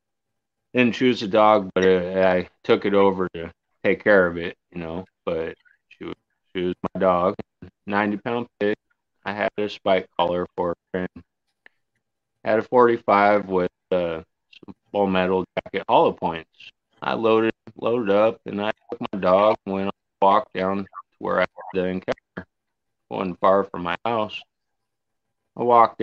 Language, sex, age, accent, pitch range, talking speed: English, male, 30-49, American, 90-115 Hz, 165 wpm